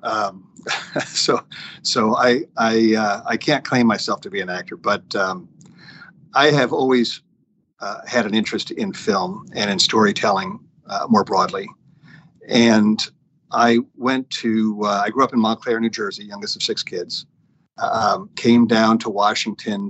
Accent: American